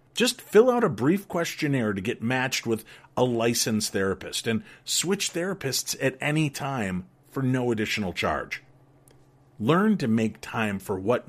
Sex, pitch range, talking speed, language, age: male, 110-155 Hz, 155 wpm, English, 40-59